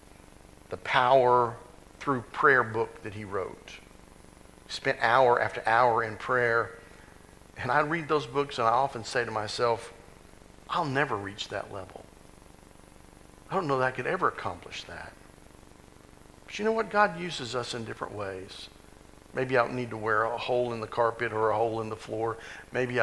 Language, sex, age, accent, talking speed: English, male, 50-69, American, 175 wpm